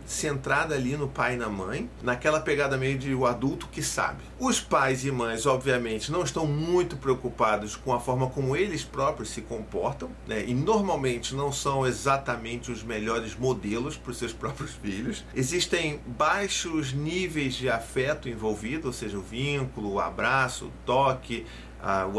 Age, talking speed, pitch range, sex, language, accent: 40-59, 165 wpm, 115-150 Hz, male, Portuguese, Brazilian